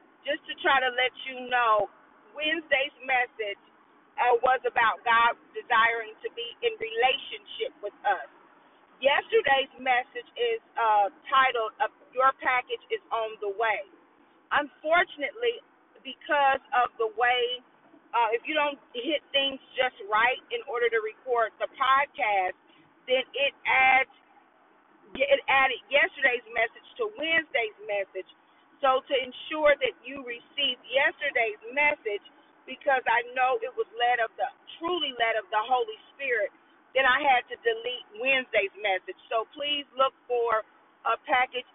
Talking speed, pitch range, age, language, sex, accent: 135 wpm, 235-365 Hz, 40-59, English, female, American